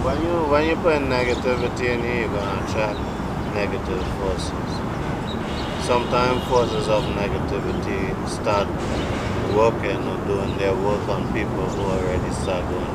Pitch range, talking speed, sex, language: 95-110 Hz, 140 wpm, male, English